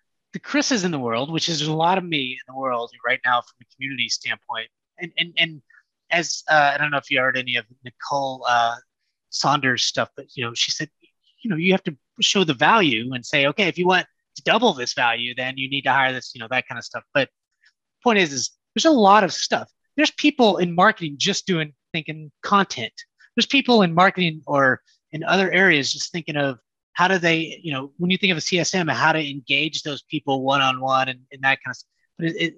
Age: 30-49